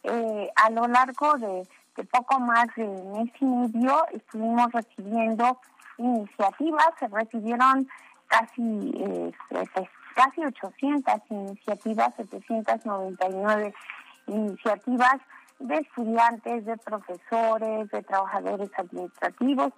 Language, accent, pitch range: Spanish, Mexican, 210-255 Hz